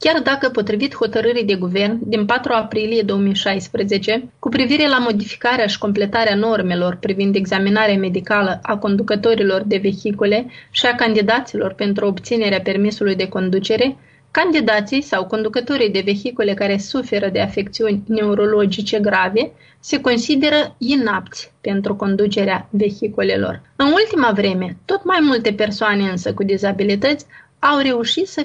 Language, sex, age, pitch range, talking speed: Romanian, female, 30-49, 200-255 Hz, 130 wpm